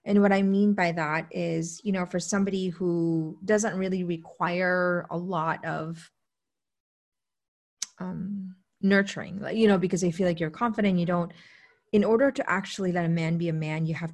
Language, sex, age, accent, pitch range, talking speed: English, female, 30-49, American, 165-195 Hz, 185 wpm